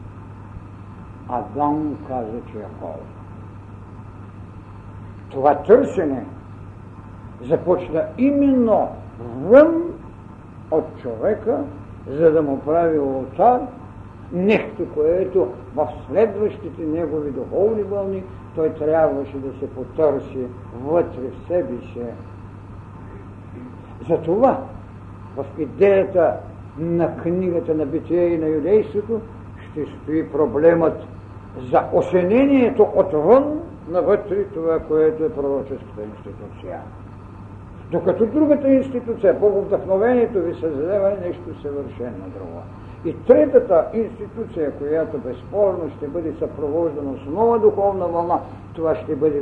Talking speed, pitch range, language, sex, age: 100 wpm, 105-170 Hz, Bulgarian, male, 60-79